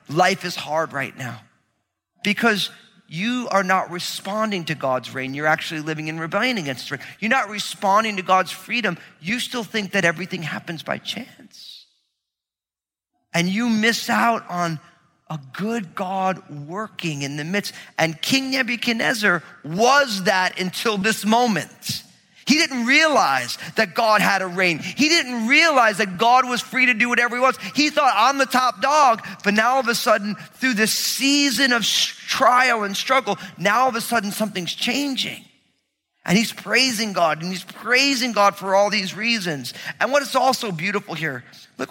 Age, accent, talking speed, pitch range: 40-59, American, 170 wpm, 170-240 Hz